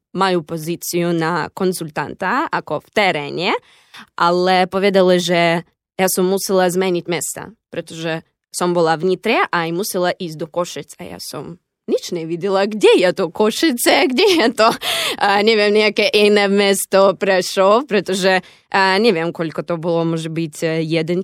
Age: 20-39